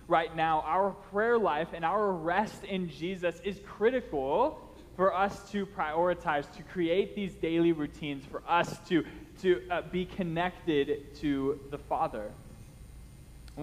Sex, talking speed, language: male, 140 wpm, English